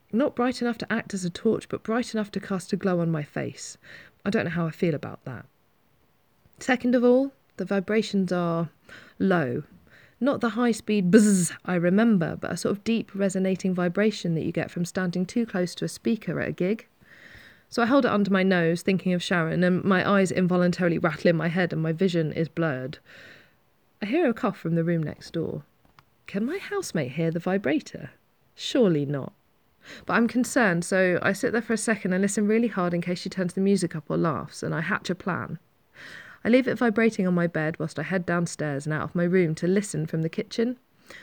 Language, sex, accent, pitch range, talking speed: English, female, British, 170-215 Hz, 215 wpm